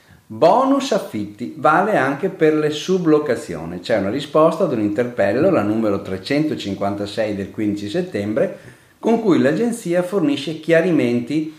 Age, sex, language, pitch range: 50-69, male, Italian, 110-165 Hz